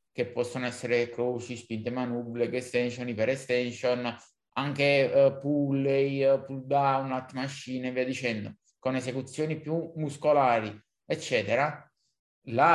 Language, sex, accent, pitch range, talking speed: Italian, male, native, 120-140 Hz, 115 wpm